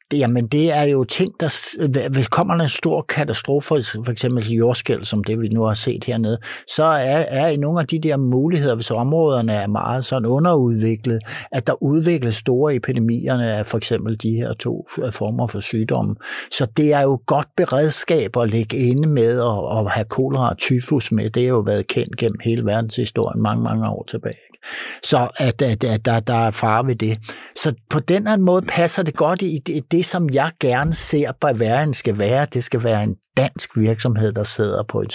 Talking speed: 200 wpm